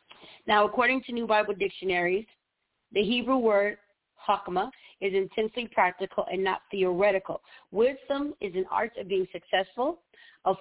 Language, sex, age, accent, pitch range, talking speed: English, female, 40-59, American, 185-225 Hz, 135 wpm